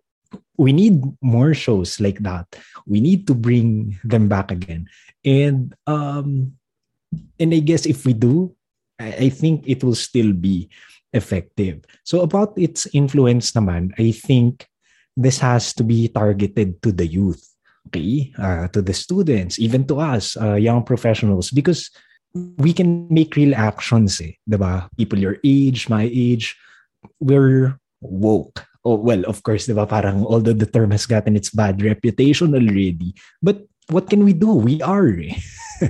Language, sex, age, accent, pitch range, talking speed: Filipino, male, 20-39, native, 105-140 Hz, 155 wpm